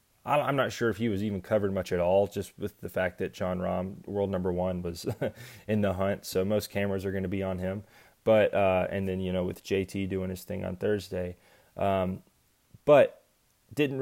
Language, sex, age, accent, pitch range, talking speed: English, male, 20-39, American, 95-110 Hz, 215 wpm